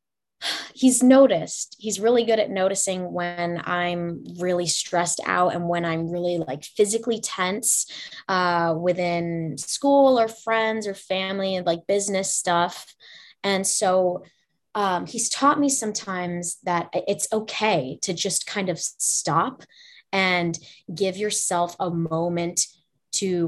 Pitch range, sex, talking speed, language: 175-205 Hz, female, 130 wpm, English